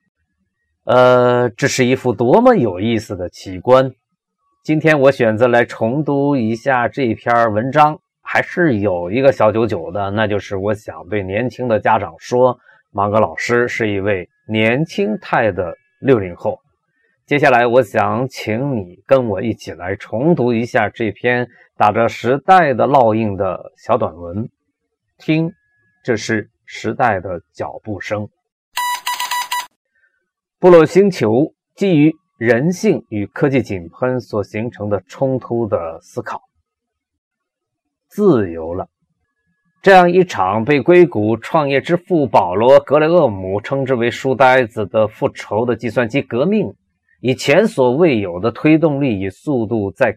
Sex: male